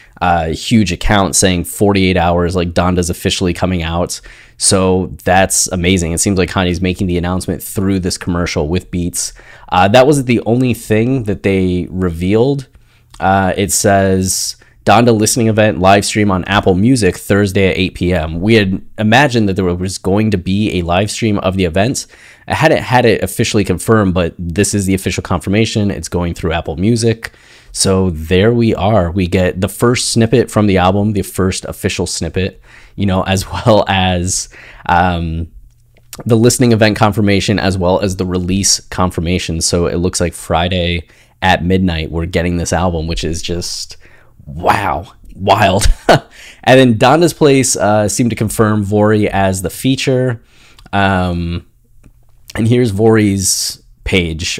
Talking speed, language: 165 wpm, English